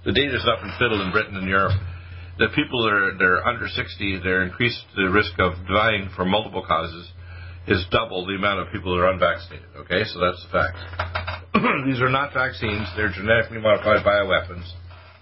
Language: English